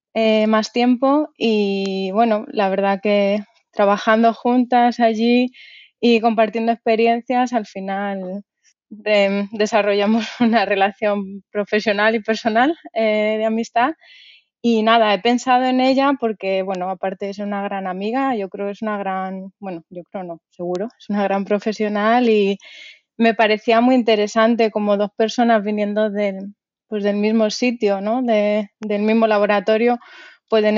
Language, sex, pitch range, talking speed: Spanish, female, 195-230 Hz, 145 wpm